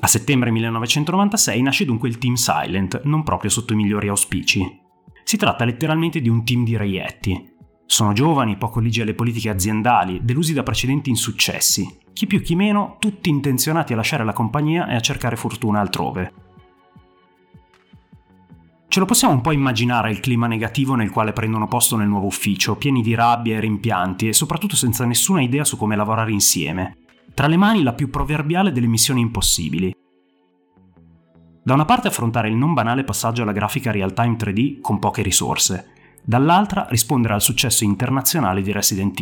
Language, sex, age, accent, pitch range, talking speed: Italian, male, 30-49, native, 105-135 Hz, 165 wpm